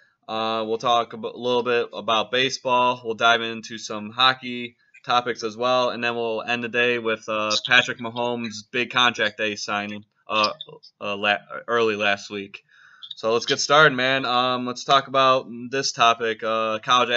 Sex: male